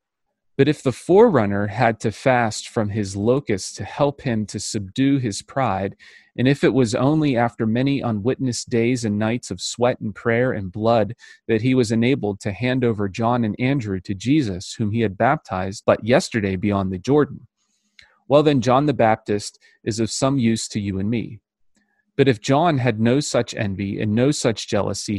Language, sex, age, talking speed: English, male, 30-49, 190 wpm